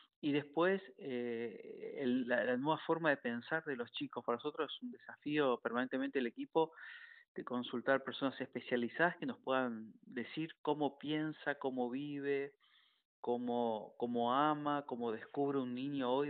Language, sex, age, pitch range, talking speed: Spanish, male, 40-59, 120-160 Hz, 145 wpm